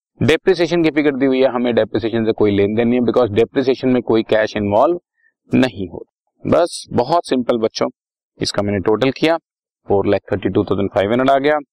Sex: male